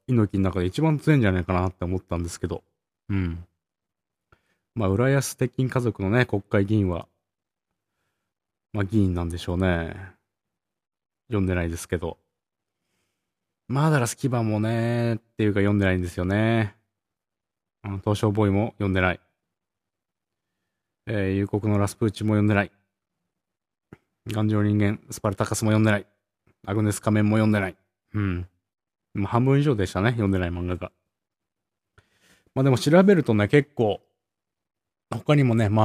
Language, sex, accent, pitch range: Japanese, male, native, 95-115 Hz